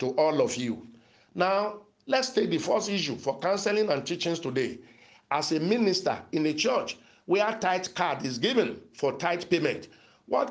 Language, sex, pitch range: English, male, 150-215 Hz